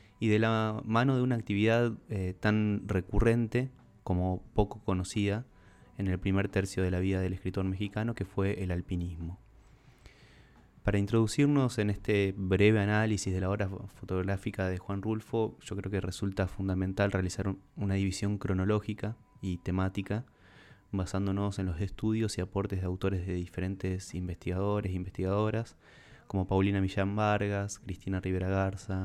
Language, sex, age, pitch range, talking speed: Spanish, male, 20-39, 95-110 Hz, 150 wpm